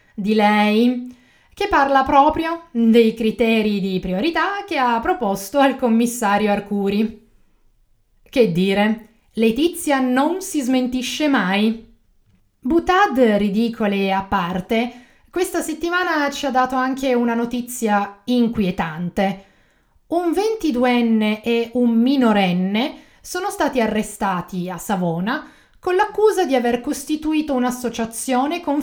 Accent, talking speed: native, 110 wpm